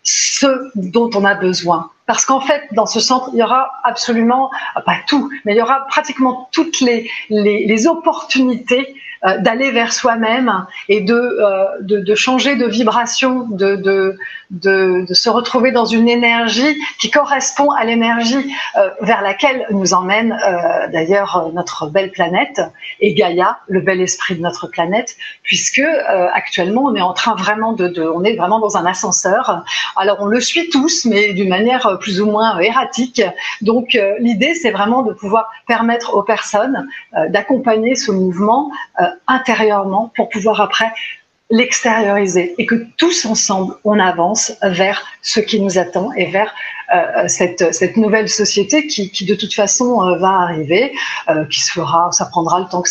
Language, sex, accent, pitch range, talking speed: French, female, French, 195-255 Hz, 165 wpm